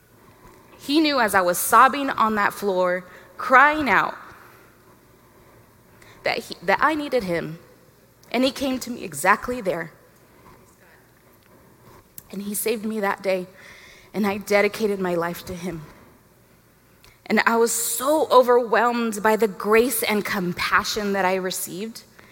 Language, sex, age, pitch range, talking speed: English, female, 20-39, 185-230 Hz, 130 wpm